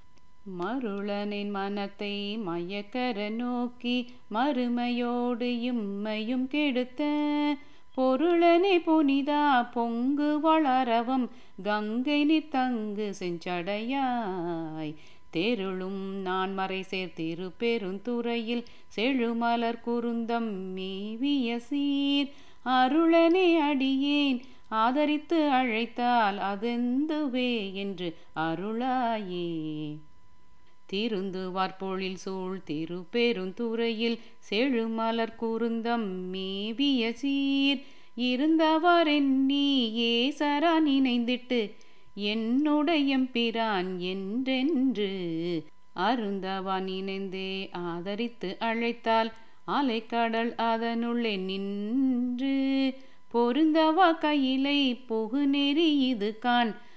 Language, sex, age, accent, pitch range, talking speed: Tamil, female, 30-49, native, 195-265 Hz, 55 wpm